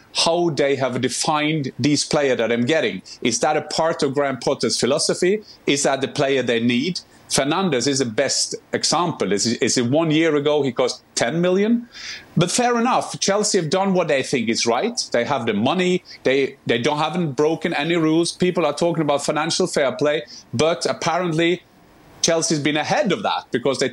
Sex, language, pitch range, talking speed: male, English, 135-170 Hz, 195 wpm